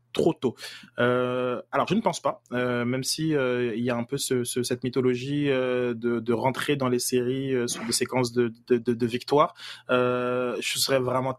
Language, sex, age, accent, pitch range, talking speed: French, male, 20-39, French, 120-135 Hz, 215 wpm